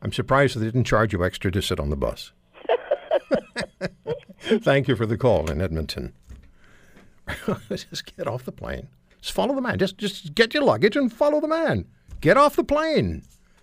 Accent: American